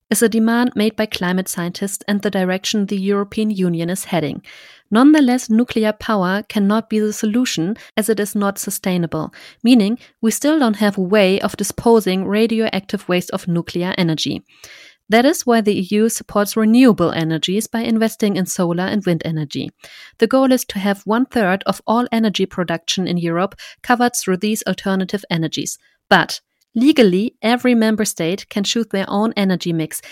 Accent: German